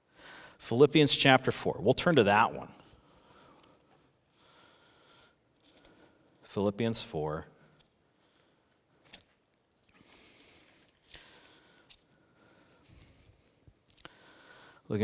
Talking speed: 45 wpm